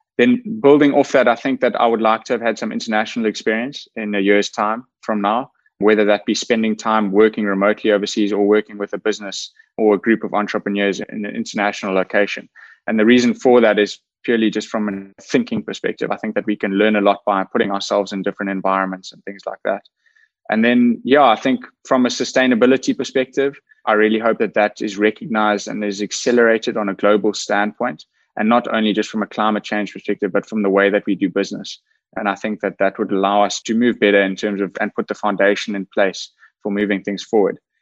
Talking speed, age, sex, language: 220 wpm, 20-39, male, English